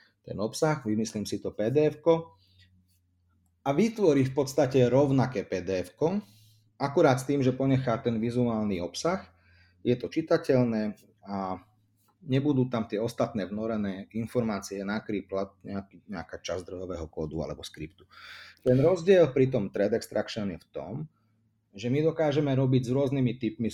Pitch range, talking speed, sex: 100-130 Hz, 135 wpm, male